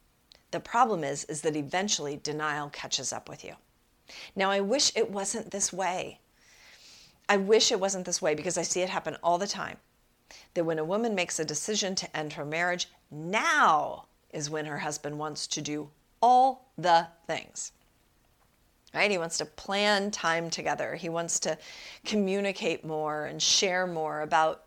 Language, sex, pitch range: English, female, 150-185 Hz